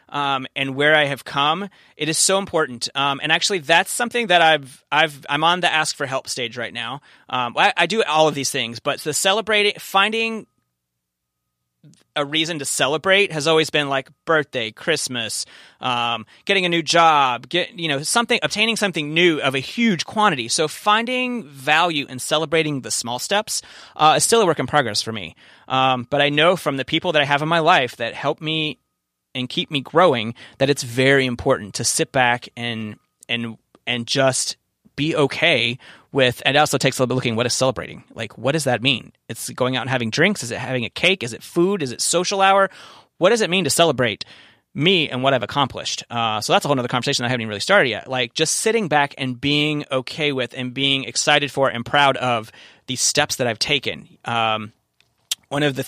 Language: English